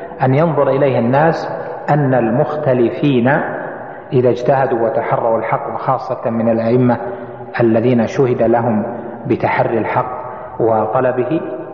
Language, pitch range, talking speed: Arabic, 125-155 Hz, 95 wpm